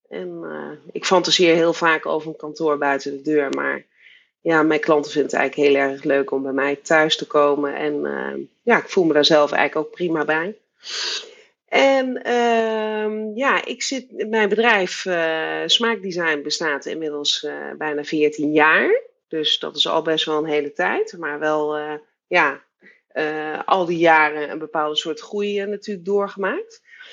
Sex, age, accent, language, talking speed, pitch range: female, 30-49, Dutch, Dutch, 165 wpm, 155-210 Hz